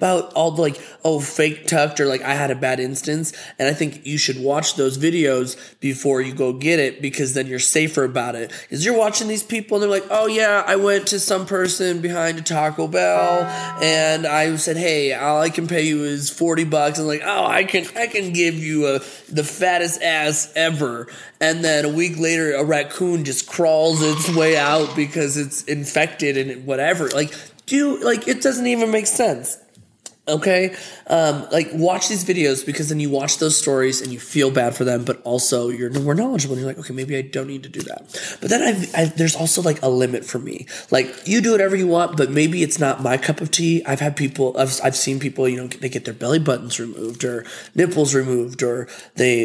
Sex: male